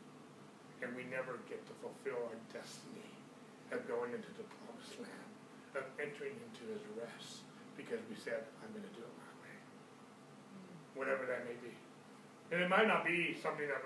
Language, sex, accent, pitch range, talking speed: English, male, American, 175-235 Hz, 175 wpm